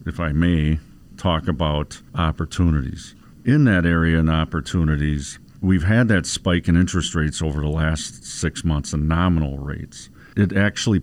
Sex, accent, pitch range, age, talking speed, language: male, American, 80-100 Hz, 50-69, 150 wpm, English